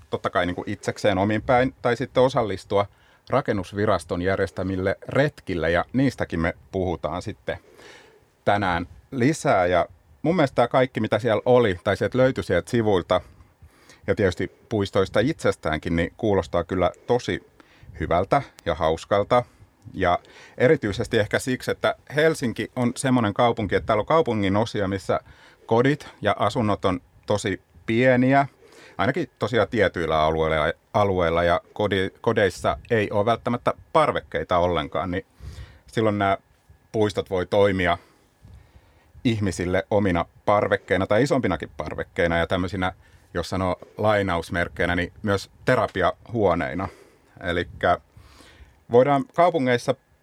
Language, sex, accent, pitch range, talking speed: Finnish, male, native, 90-125 Hz, 115 wpm